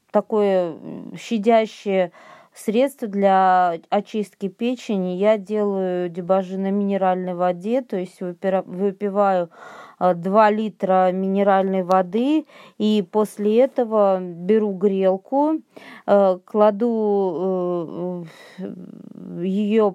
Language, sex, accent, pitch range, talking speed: Russian, female, native, 185-220 Hz, 80 wpm